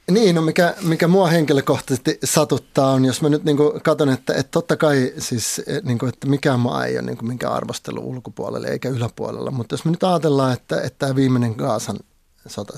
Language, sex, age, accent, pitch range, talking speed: Finnish, male, 30-49, native, 130-165 Hz, 195 wpm